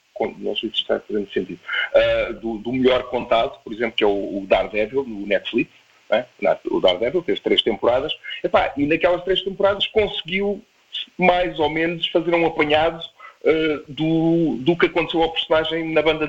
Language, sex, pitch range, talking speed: Portuguese, male, 130-195 Hz, 180 wpm